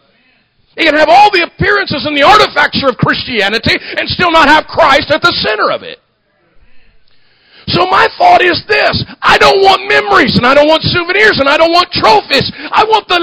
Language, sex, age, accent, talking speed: English, male, 40-59, American, 195 wpm